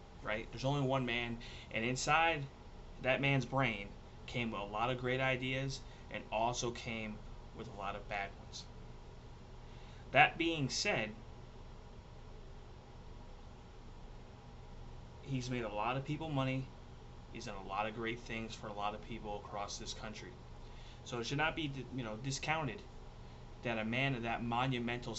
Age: 30-49